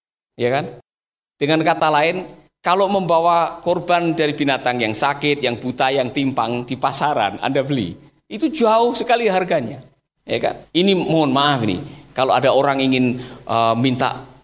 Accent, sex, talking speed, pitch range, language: native, male, 150 wpm, 140-230 Hz, Indonesian